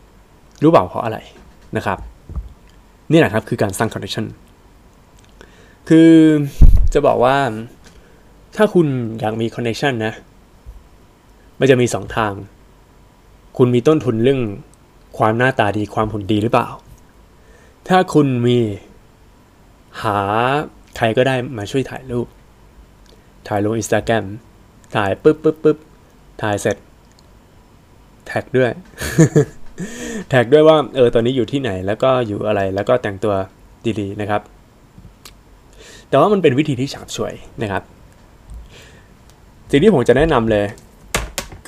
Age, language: 20-39, Thai